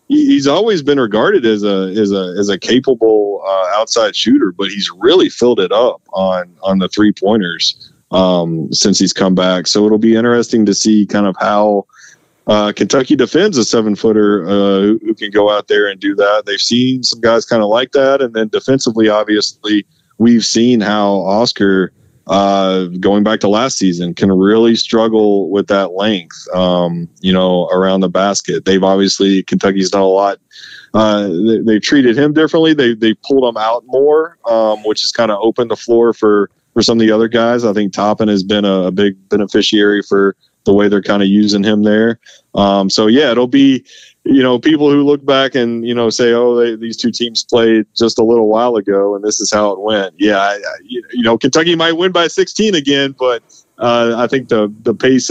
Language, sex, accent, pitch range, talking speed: English, male, American, 100-120 Hz, 205 wpm